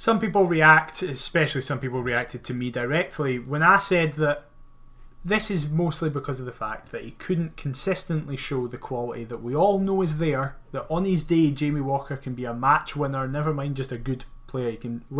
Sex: male